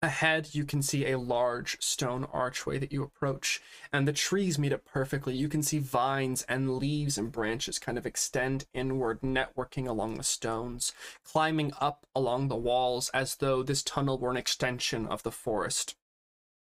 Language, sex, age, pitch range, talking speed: English, male, 20-39, 130-150 Hz, 175 wpm